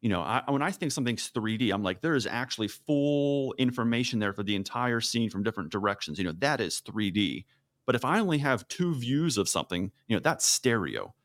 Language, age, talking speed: English, 30-49, 220 wpm